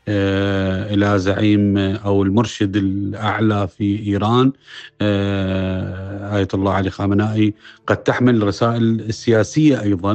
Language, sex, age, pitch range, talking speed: Arabic, male, 40-59, 100-110 Hz, 95 wpm